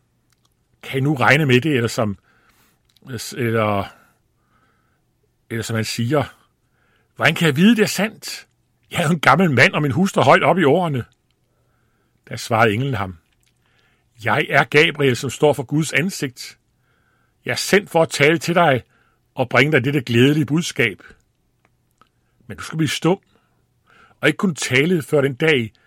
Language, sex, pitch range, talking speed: Danish, male, 115-160 Hz, 165 wpm